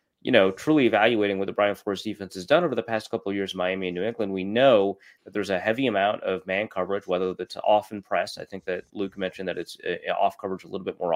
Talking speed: 265 wpm